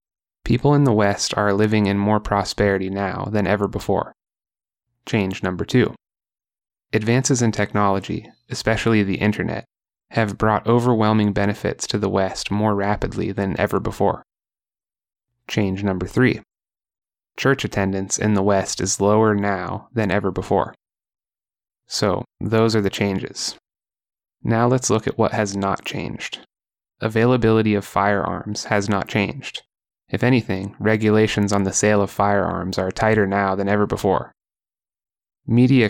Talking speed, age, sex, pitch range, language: 135 wpm, 20-39, male, 100-110 Hz, English